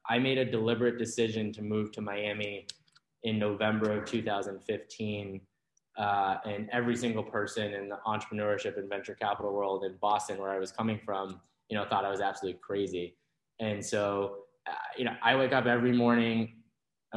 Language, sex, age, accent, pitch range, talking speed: English, male, 10-29, American, 105-120 Hz, 175 wpm